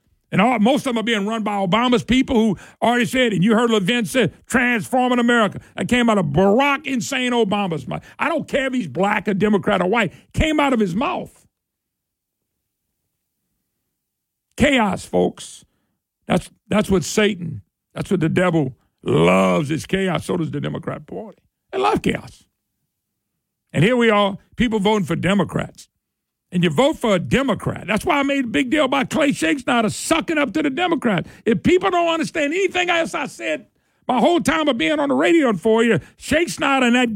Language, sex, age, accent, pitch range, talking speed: English, male, 50-69, American, 210-310 Hz, 190 wpm